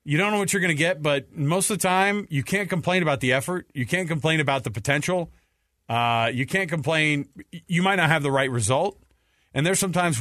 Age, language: 40-59, English